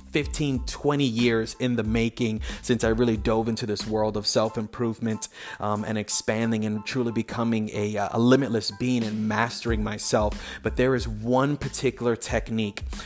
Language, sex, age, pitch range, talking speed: English, male, 30-49, 110-130 Hz, 150 wpm